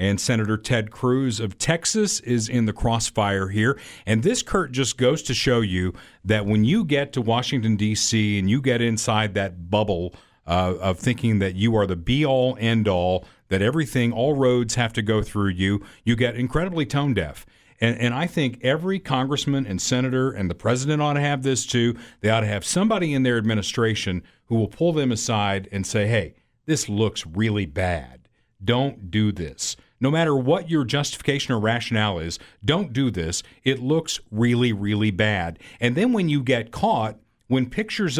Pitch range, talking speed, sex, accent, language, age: 105-140 Hz, 190 wpm, male, American, English, 50-69